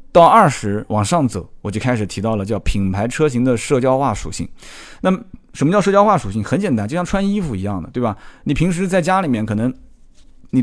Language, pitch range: Chinese, 105-140 Hz